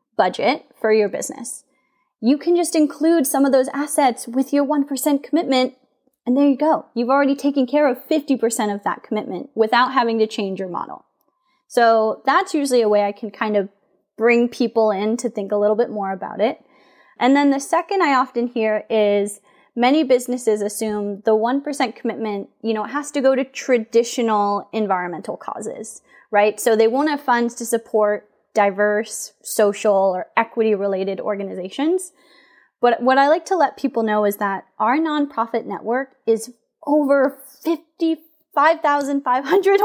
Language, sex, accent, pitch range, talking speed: English, female, American, 215-280 Hz, 165 wpm